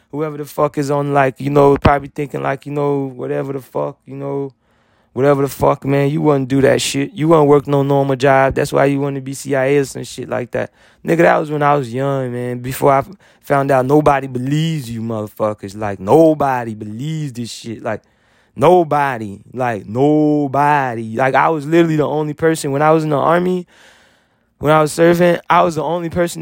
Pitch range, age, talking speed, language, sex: 135-155 Hz, 20-39, 205 wpm, English, male